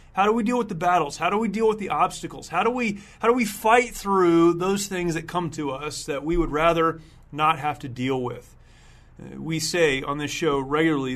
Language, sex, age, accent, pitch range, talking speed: English, male, 30-49, American, 145-180 Hz, 230 wpm